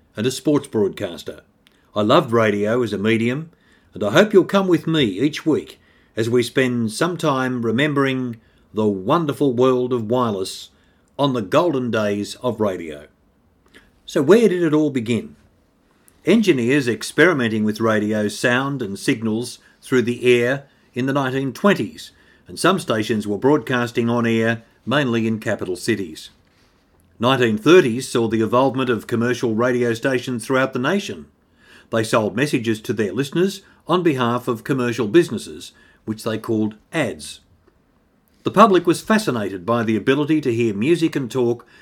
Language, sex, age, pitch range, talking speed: English, male, 50-69, 115-140 Hz, 150 wpm